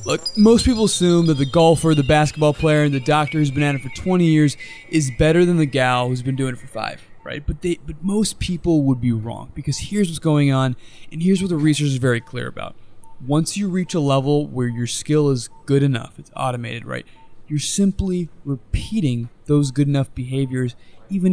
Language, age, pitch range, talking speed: English, 20-39, 130-160 Hz, 215 wpm